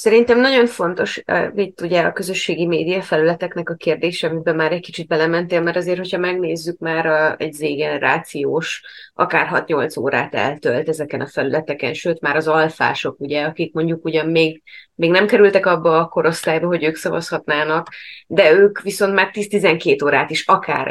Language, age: Hungarian, 20-39